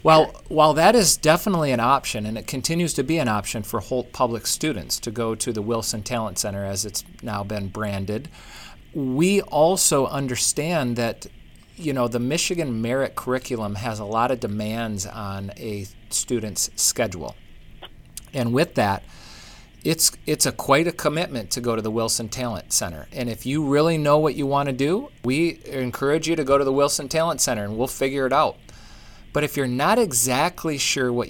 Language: English